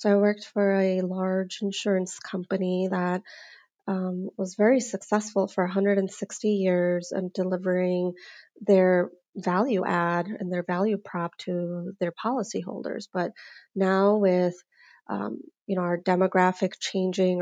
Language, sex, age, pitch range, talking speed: English, female, 30-49, 175-195 Hz, 125 wpm